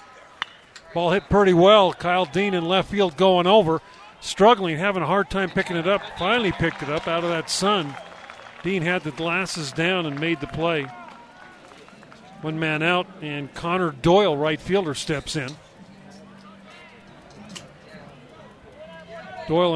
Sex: male